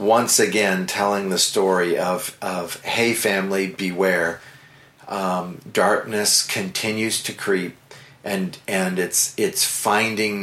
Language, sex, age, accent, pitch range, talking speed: English, male, 40-59, American, 95-120 Hz, 115 wpm